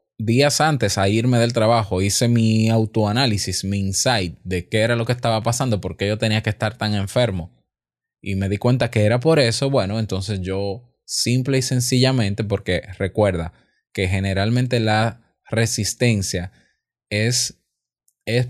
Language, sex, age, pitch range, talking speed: Spanish, male, 20-39, 95-125 Hz, 155 wpm